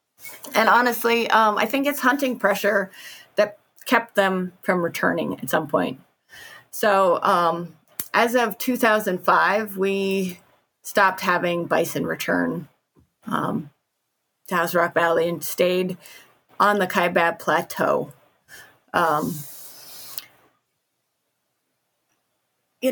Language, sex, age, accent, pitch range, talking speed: English, female, 30-49, American, 185-220 Hz, 100 wpm